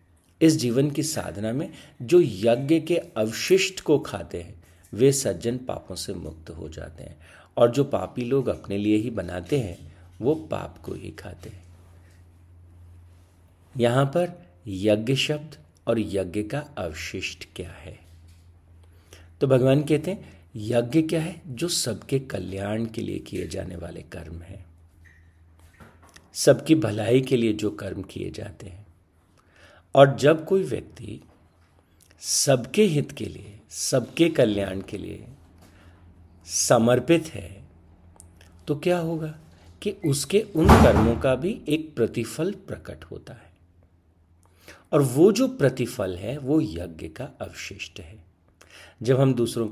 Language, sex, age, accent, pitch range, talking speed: Hindi, male, 50-69, native, 85-130 Hz, 135 wpm